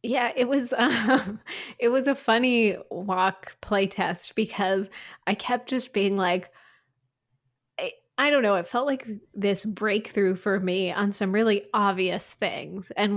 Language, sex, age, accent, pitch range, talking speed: English, female, 20-39, American, 180-220 Hz, 150 wpm